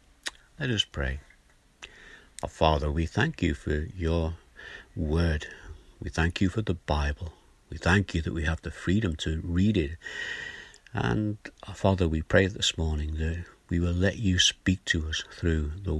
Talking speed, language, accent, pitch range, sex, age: 170 wpm, English, British, 75-90 Hz, male, 60-79